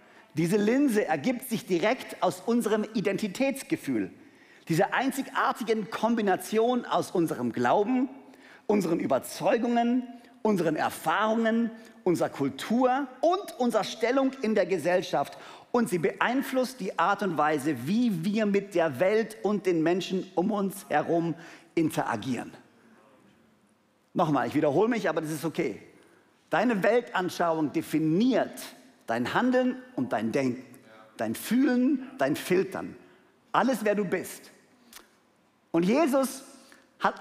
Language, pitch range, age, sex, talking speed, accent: German, 175-250 Hz, 50-69, male, 115 wpm, German